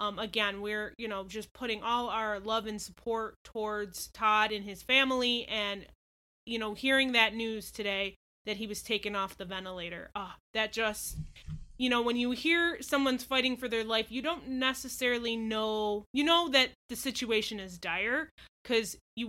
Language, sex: English, female